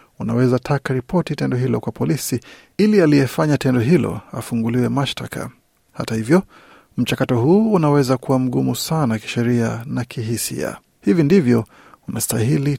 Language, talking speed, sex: Swahili, 125 wpm, male